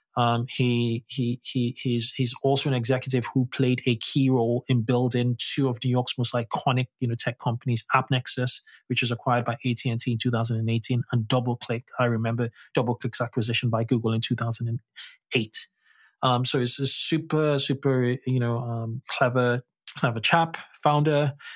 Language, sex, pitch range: English, male, 120-135 Hz